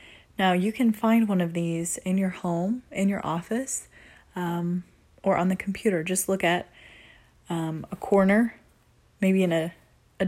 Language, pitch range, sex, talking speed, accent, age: English, 165-205 Hz, female, 165 wpm, American, 20-39